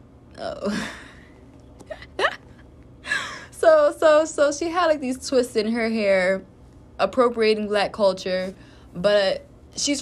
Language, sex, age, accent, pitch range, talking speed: English, female, 20-39, American, 180-220 Hz, 100 wpm